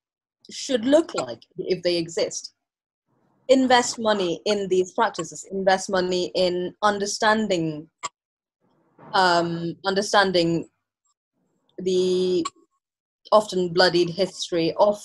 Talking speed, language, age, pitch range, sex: 90 wpm, English, 20-39, 175-215 Hz, female